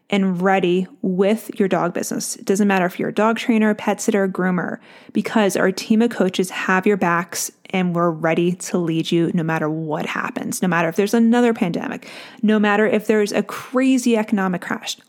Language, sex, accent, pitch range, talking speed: English, female, American, 185-230 Hz, 205 wpm